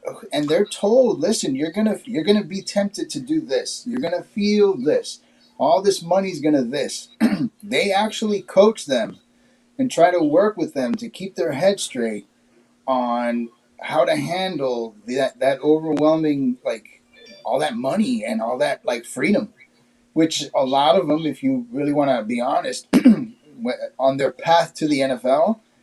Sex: male